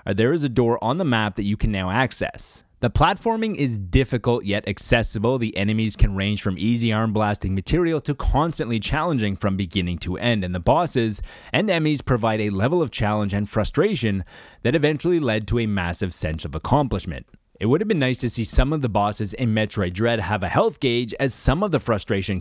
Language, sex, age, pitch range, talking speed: English, male, 30-49, 100-130 Hz, 210 wpm